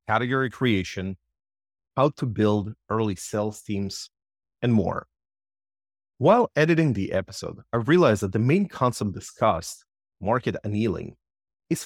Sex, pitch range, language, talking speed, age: male, 95-125 Hz, English, 120 wpm, 30-49